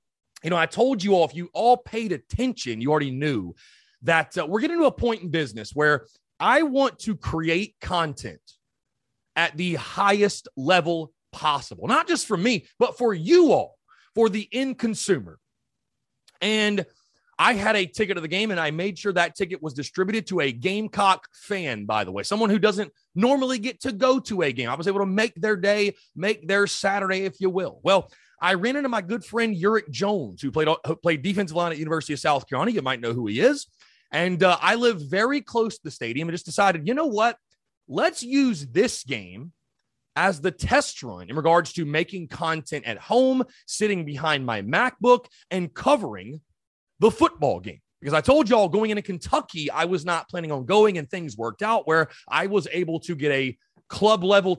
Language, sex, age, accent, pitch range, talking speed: English, male, 30-49, American, 160-220 Hz, 200 wpm